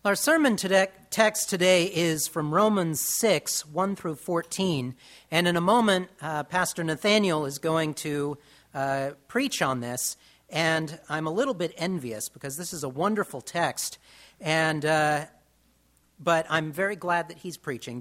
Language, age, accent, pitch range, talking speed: English, 40-59, American, 140-210 Hz, 155 wpm